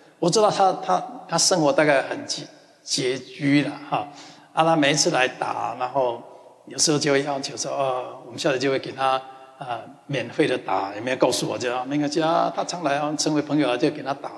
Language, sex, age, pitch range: Chinese, male, 60-79, 145-185 Hz